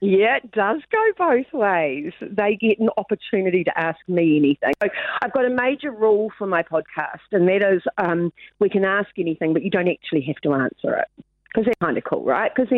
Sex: female